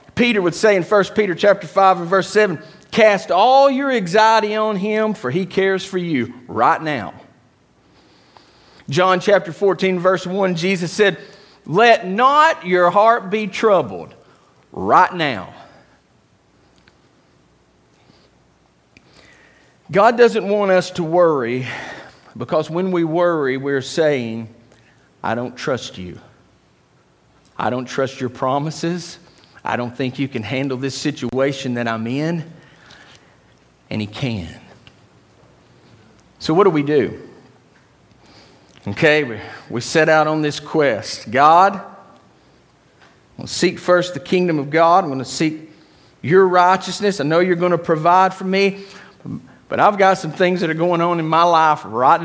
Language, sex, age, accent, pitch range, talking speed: English, male, 40-59, American, 130-190 Hz, 140 wpm